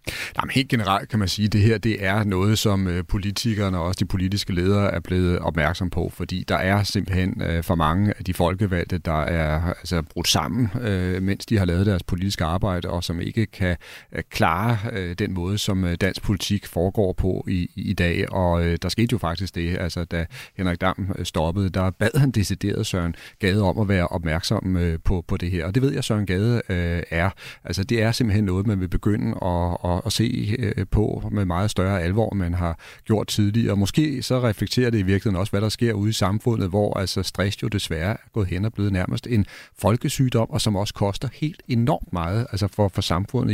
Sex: male